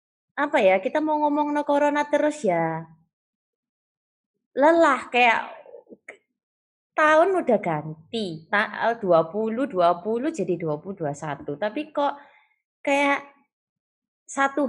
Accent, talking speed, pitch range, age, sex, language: native, 95 wpm, 175-280 Hz, 20-39, female, Indonesian